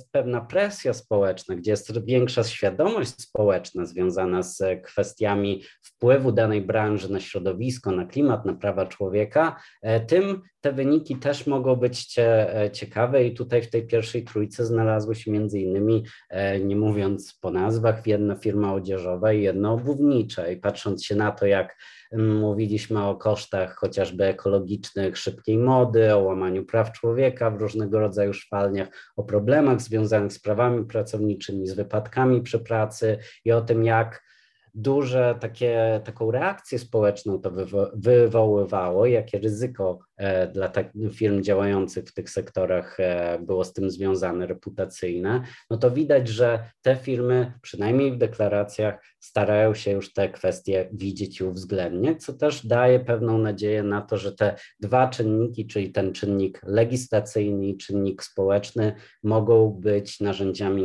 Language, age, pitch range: Polish, 30-49, 100-115 Hz